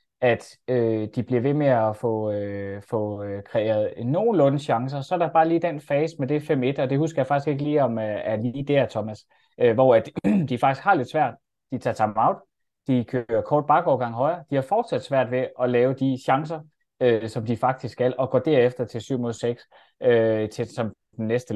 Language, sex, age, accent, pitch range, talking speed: Danish, male, 20-39, native, 110-130 Hz, 215 wpm